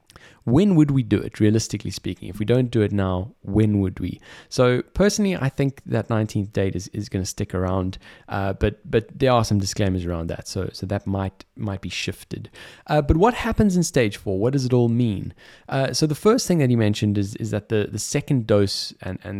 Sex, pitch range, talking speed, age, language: male, 95-120 Hz, 230 wpm, 20-39, English